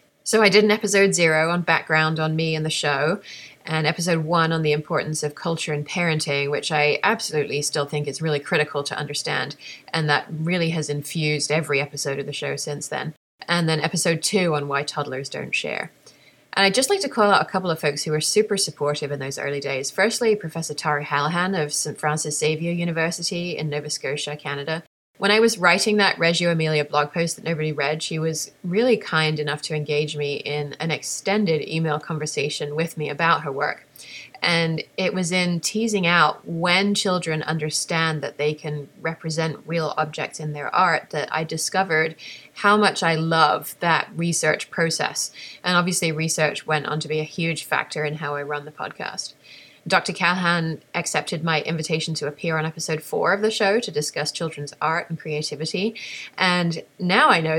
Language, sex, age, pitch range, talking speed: English, female, 30-49, 150-175 Hz, 190 wpm